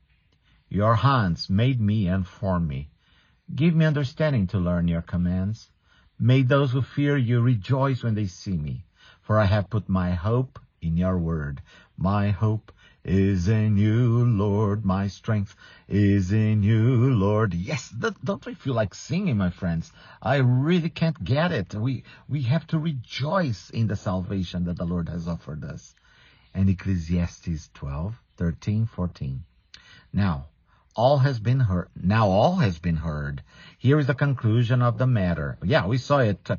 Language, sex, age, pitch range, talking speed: English, male, 50-69, 95-130 Hz, 160 wpm